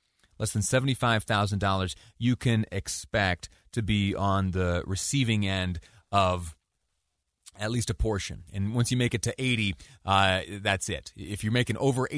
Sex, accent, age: male, American, 30-49